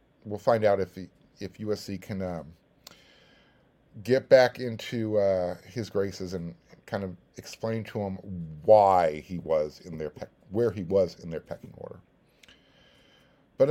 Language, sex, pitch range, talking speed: English, male, 100-145 Hz, 155 wpm